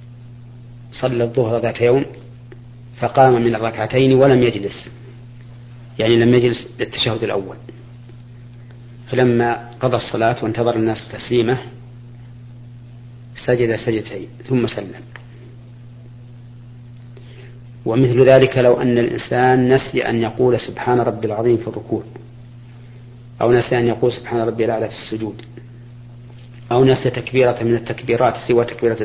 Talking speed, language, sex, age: 110 wpm, Arabic, male, 40-59